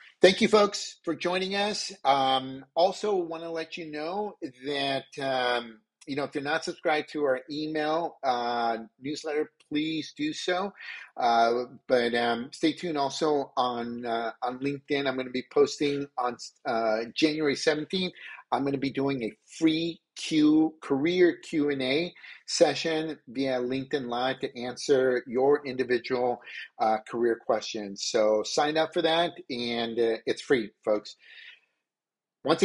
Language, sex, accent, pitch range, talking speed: English, male, American, 125-165 Hz, 145 wpm